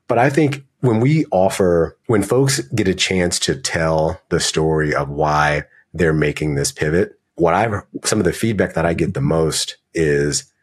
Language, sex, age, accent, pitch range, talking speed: English, male, 30-49, American, 80-105 Hz, 185 wpm